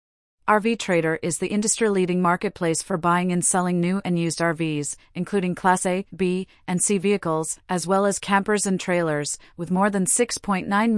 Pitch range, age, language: 165-195 Hz, 30-49, English